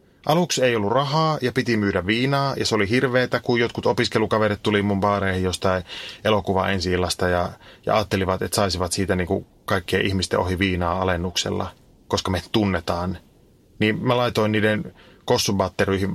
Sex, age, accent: male, 30-49, native